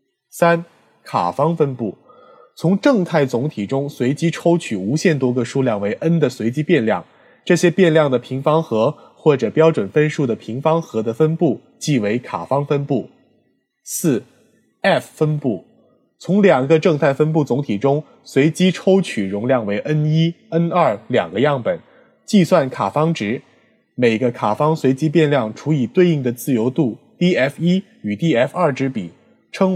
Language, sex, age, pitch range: Chinese, male, 20-39, 130-170 Hz